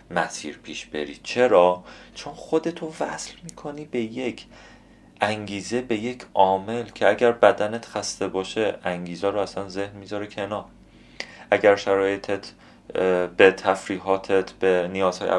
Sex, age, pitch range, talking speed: male, 30-49, 85-105 Hz, 120 wpm